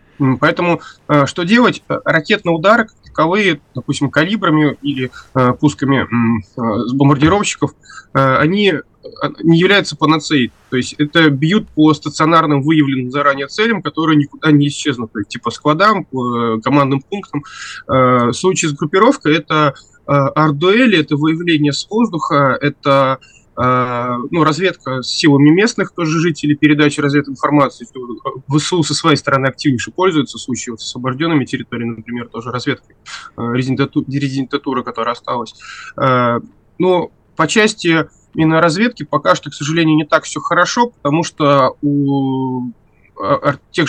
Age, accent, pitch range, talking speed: 20-39, native, 135-165 Hz, 120 wpm